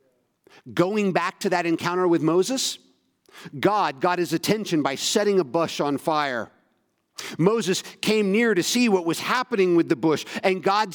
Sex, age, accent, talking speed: male, 50-69, American, 165 wpm